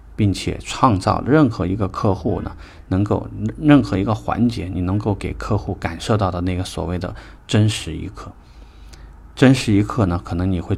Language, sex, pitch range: Chinese, male, 85-110 Hz